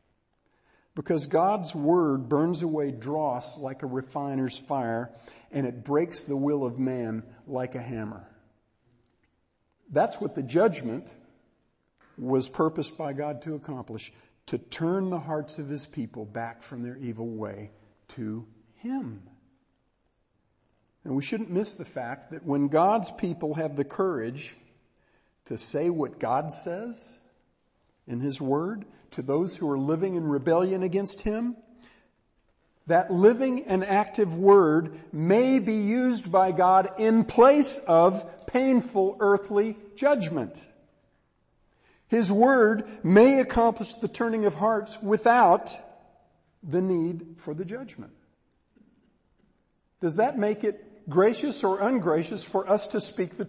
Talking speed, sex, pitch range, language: 130 wpm, male, 130-210 Hz, English